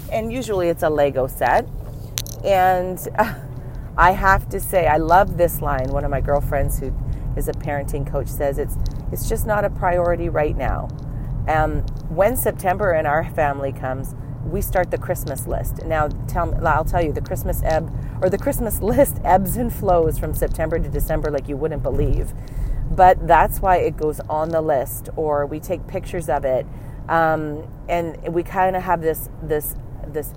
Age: 40-59